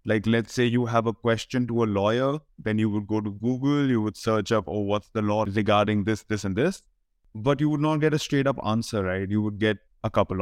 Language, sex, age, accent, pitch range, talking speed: English, male, 20-39, Indian, 100-120 Hz, 255 wpm